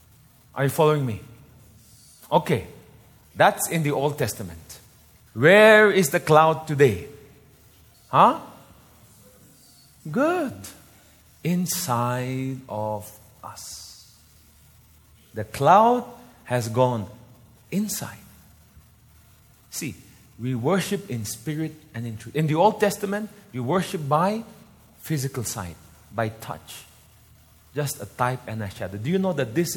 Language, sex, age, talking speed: English, male, 30-49, 110 wpm